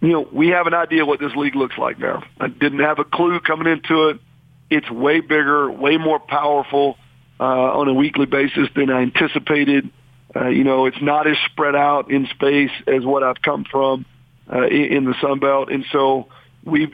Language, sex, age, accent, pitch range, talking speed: English, male, 50-69, American, 135-155 Hz, 200 wpm